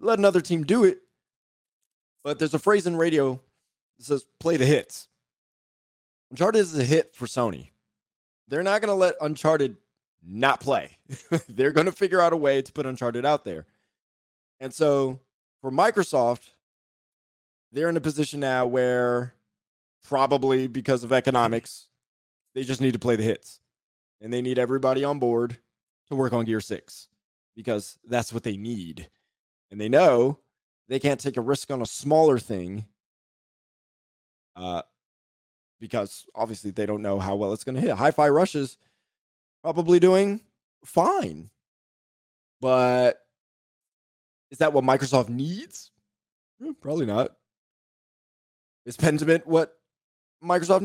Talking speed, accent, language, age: 145 wpm, American, English, 20-39